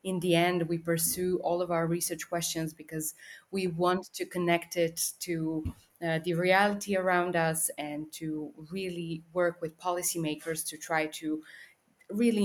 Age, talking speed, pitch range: 20-39, 155 wpm, 165-190 Hz